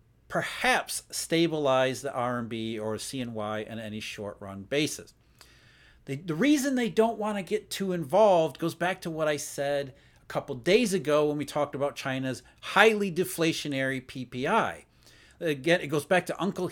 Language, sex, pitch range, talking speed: English, male, 130-185 Hz, 160 wpm